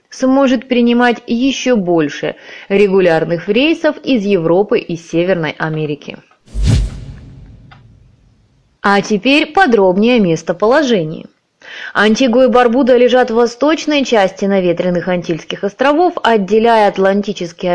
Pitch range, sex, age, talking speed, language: 185-250 Hz, female, 20-39, 95 wpm, Russian